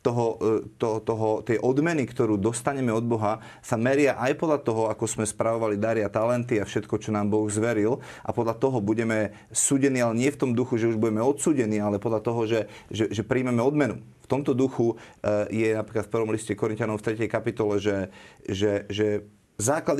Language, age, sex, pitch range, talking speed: Slovak, 30-49, male, 110-130 Hz, 190 wpm